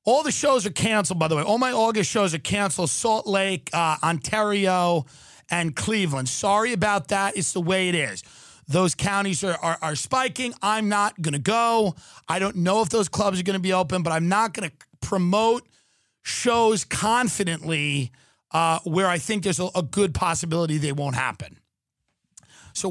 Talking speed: 185 wpm